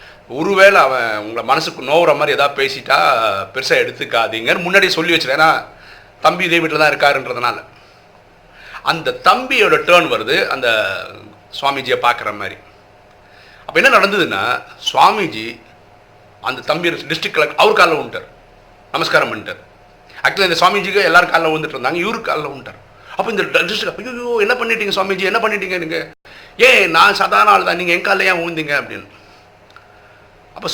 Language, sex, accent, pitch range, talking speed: Tamil, male, native, 105-170 Hz, 135 wpm